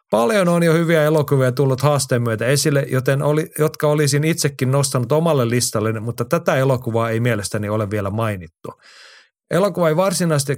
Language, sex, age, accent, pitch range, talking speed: Finnish, male, 30-49, native, 110-140 Hz, 160 wpm